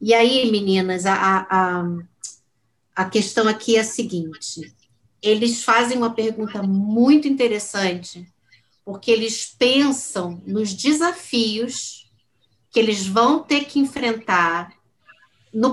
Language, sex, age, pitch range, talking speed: Portuguese, female, 50-69, 190-240 Hz, 105 wpm